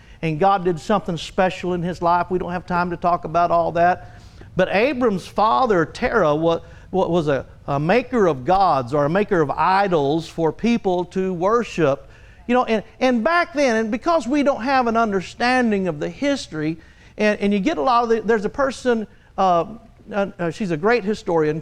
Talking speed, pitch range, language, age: 180 wpm, 170-230 Hz, English, 50-69